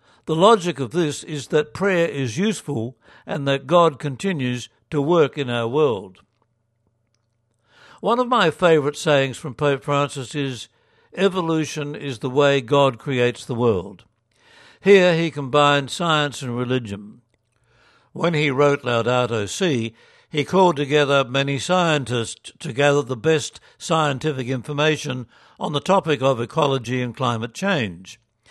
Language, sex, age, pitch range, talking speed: English, male, 60-79, 125-160 Hz, 135 wpm